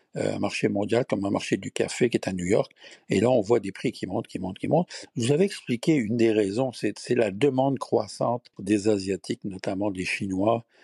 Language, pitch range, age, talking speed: French, 100-150 Hz, 60-79, 235 wpm